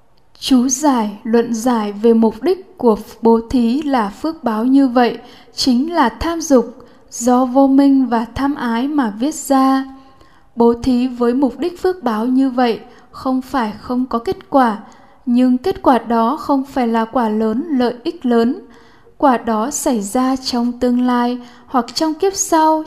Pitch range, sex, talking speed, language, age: 230-270 Hz, female, 175 wpm, Vietnamese, 10-29